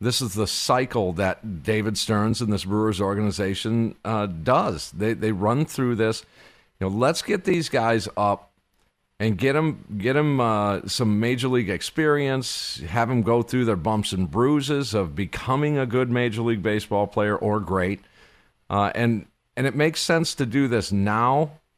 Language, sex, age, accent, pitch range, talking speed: English, male, 50-69, American, 105-135 Hz, 175 wpm